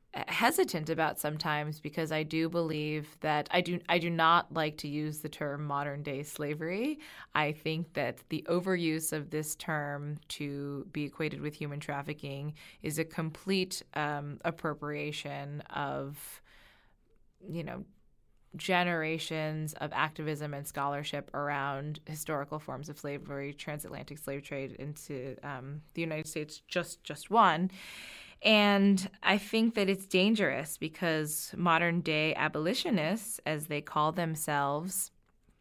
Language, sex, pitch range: English, female, 150-170 Hz